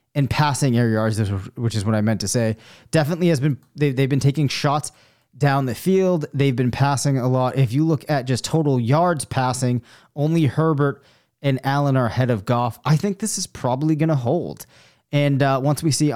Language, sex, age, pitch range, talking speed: English, male, 30-49, 120-145 Hz, 205 wpm